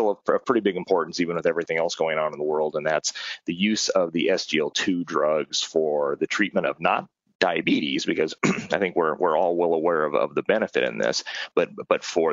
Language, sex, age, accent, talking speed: Italian, male, 30-49, American, 220 wpm